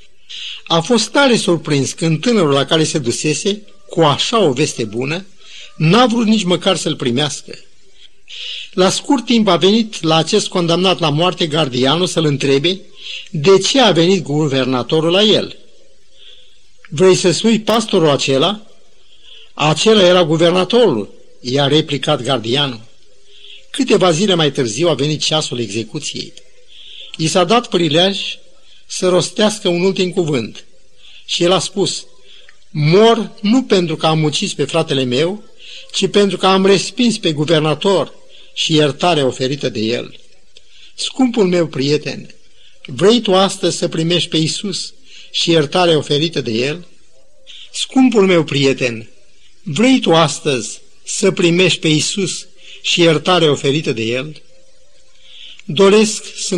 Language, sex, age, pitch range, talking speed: Romanian, male, 50-69, 150-205 Hz, 135 wpm